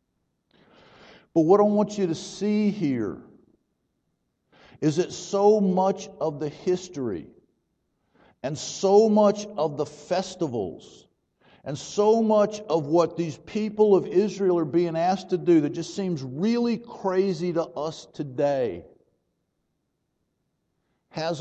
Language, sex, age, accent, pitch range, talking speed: English, male, 50-69, American, 150-190 Hz, 125 wpm